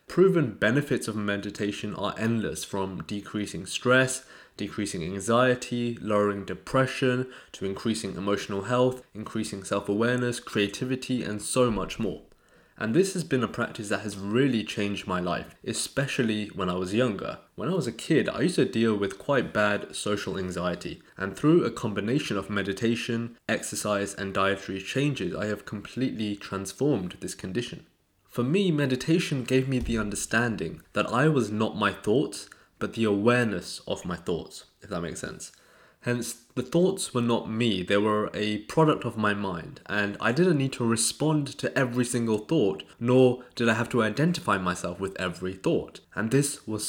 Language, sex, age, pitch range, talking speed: English, male, 20-39, 100-125 Hz, 165 wpm